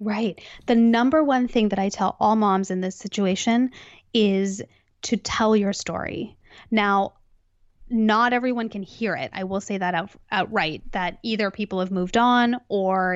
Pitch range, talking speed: 190-225 Hz, 165 wpm